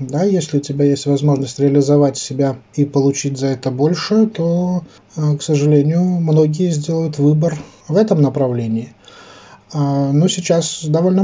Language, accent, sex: Russian, native, male